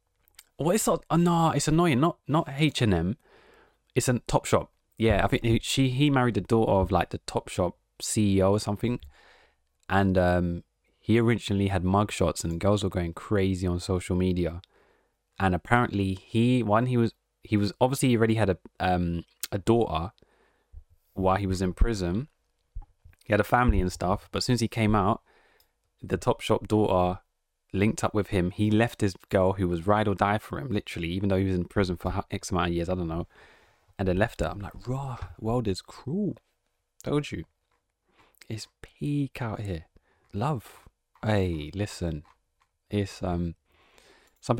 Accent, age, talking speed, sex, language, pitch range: British, 20-39, 185 wpm, male, English, 90-110 Hz